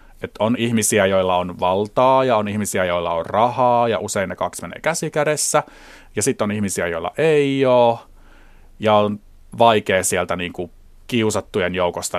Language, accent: Finnish, native